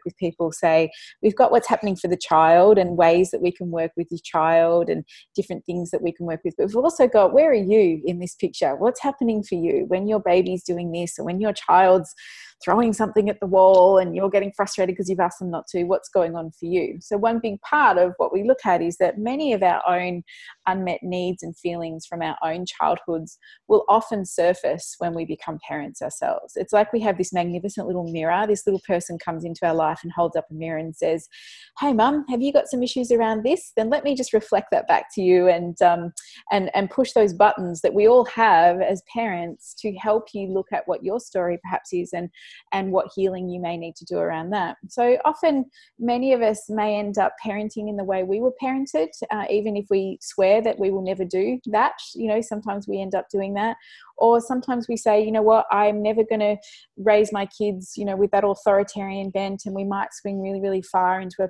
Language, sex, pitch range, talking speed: English, female, 180-215 Hz, 230 wpm